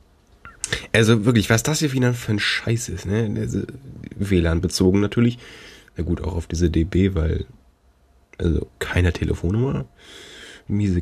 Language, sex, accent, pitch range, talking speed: German, male, German, 70-105 Hz, 130 wpm